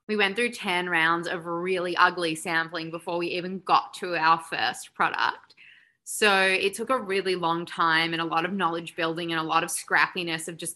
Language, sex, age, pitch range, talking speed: English, female, 20-39, 165-200 Hz, 205 wpm